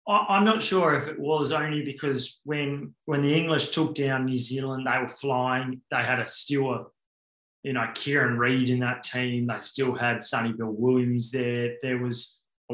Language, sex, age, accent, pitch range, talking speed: English, male, 20-39, Australian, 120-140 Hz, 190 wpm